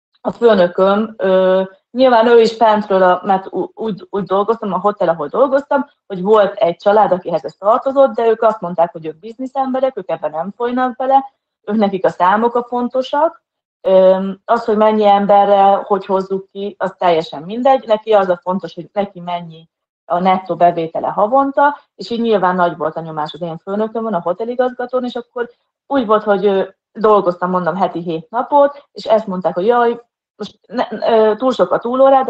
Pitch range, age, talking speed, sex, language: 180-235 Hz, 30-49, 180 wpm, female, Hungarian